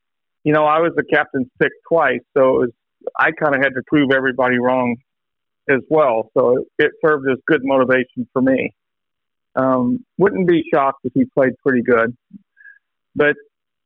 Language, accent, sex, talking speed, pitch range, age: English, American, male, 175 wpm, 135-175 Hz, 50-69